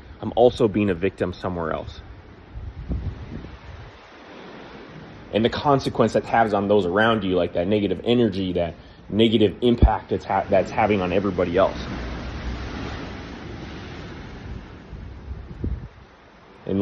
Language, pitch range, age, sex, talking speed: English, 95-115 Hz, 20-39, male, 105 wpm